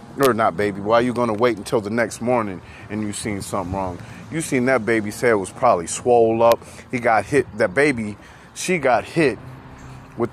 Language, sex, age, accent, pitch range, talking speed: English, male, 30-49, American, 105-125 Hz, 205 wpm